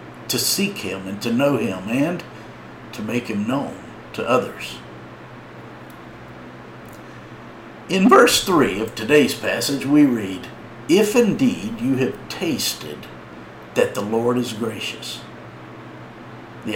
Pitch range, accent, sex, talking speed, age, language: 100-125 Hz, American, male, 120 wpm, 50-69, English